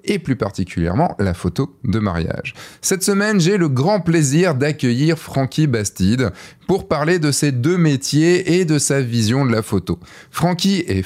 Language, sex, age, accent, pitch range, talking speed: French, male, 20-39, French, 110-155 Hz, 170 wpm